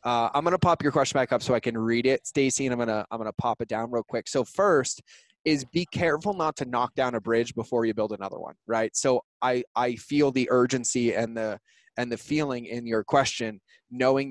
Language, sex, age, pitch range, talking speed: English, male, 20-39, 115-135 Hz, 235 wpm